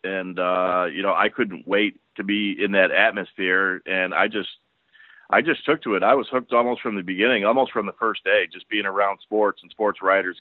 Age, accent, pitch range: 40-59, American, 95-115 Hz